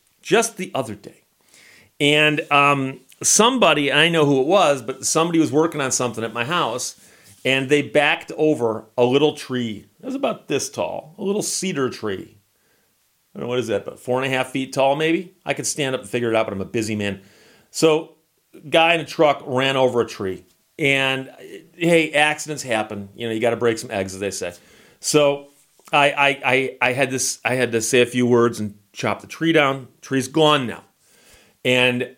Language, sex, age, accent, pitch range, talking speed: English, male, 40-59, American, 115-150 Hz, 210 wpm